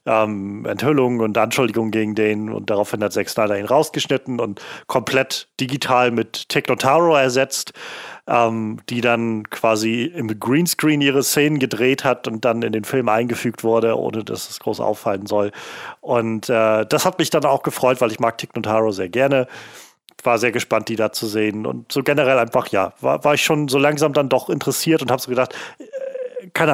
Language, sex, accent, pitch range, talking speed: German, male, German, 110-135 Hz, 185 wpm